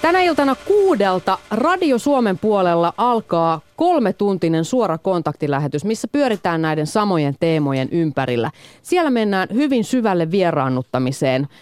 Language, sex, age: Finnish, female, 30-49